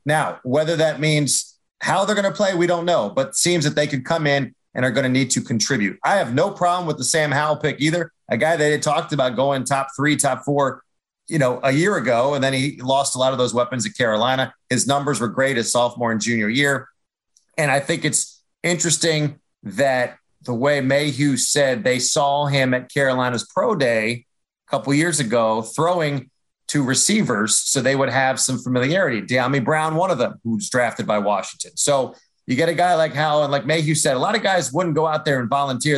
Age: 30-49